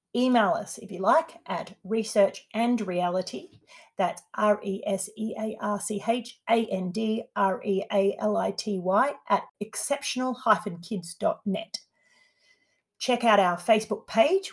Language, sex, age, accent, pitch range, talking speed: English, female, 30-49, Australian, 195-230 Hz, 65 wpm